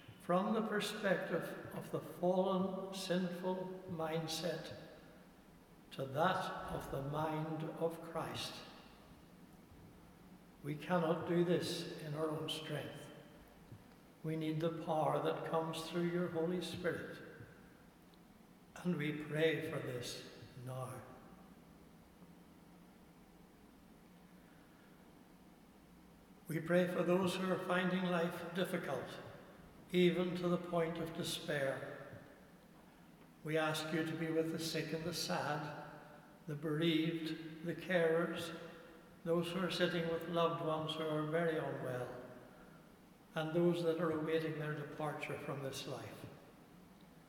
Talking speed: 115 wpm